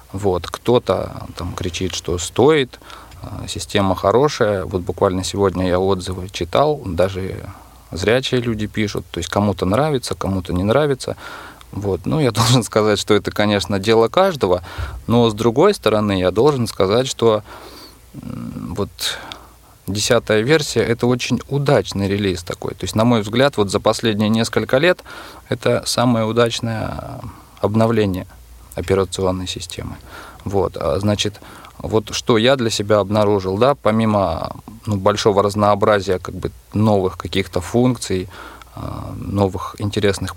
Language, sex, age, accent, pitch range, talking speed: Russian, male, 20-39, native, 95-115 Hz, 130 wpm